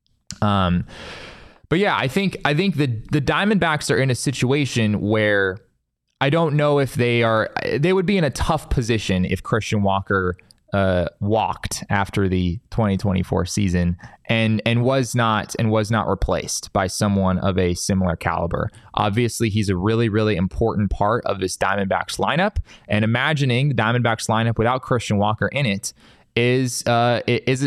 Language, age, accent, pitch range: English, 20-39, American, 100-125 Hz